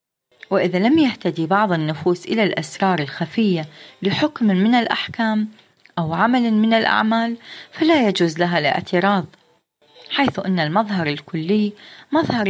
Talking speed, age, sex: 115 wpm, 30-49, female